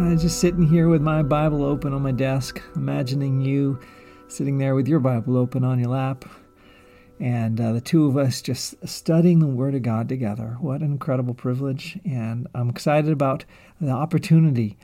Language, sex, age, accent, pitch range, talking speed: English, male, 50-69, American, 130-160 Hz, 180 wpm